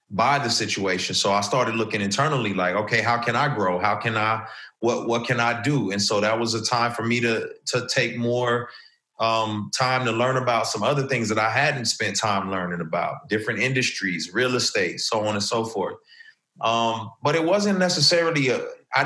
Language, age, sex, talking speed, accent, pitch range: English, 30-49, male, 205 wpm, American, 105-145 Hz